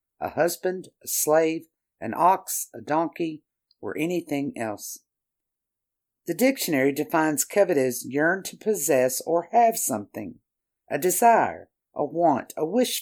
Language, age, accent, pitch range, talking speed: English, 50-69, American, 140-200 Hz, 130 wpm